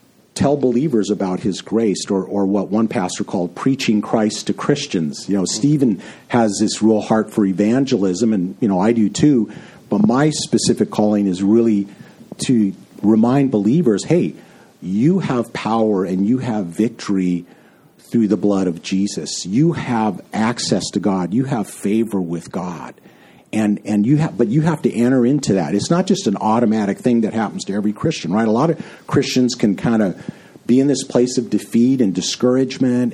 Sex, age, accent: male, 50-69, American